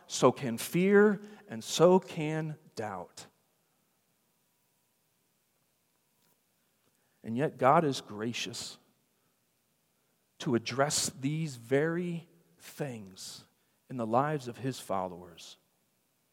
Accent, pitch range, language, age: American, 130-185 Hz, English, 40-59